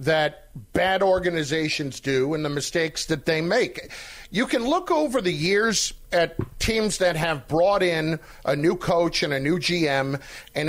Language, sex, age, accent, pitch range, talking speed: English, male, 40-59, American, 165-235 Hz, 170 wpm